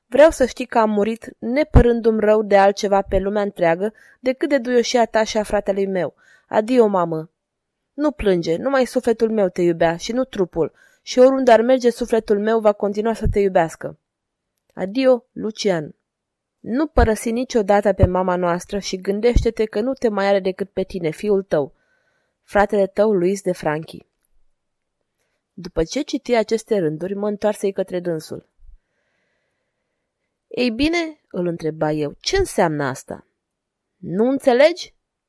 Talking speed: 150 wpm